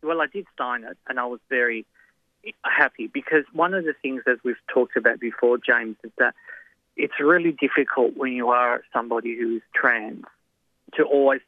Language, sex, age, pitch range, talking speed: English, male, 30-49, 115-135 Hz, 180 wpm